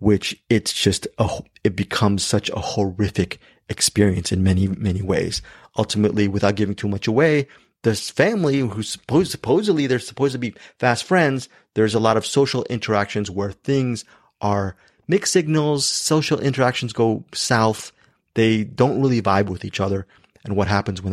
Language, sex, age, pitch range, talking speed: English, male, 30-49, 105-140 Hz, 155 wpm